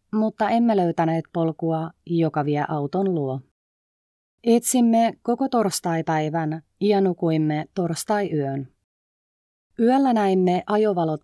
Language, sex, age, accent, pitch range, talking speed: Finnish, female, 30-49, native, 155-195 Hz, 90 wpm